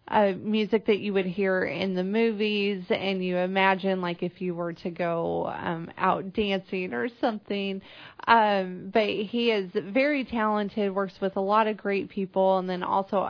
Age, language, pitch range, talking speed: 30-49, English, 185-215 Hz, 175 wpm